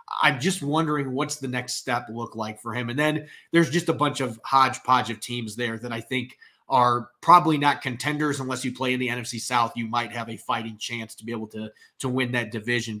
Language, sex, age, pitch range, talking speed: English, male, 30-49, 115-145 Hz, 230 wpm